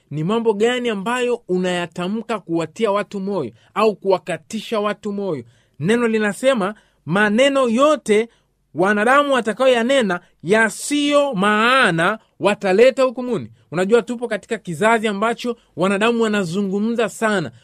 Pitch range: 190-245 Hz